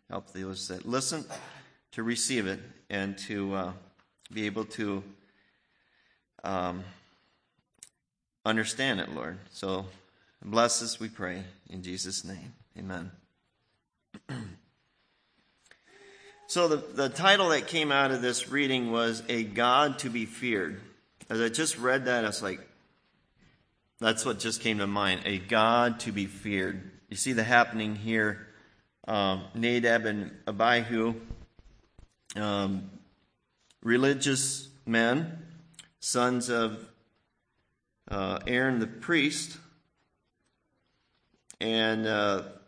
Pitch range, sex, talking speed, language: 100-125 Hz, male, 115 wpm, English